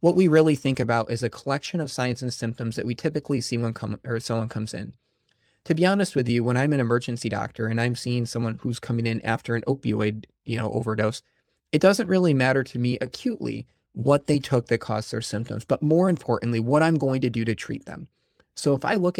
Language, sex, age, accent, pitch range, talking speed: English, male, 20-39, American, 115-140 Hz, 230 wpm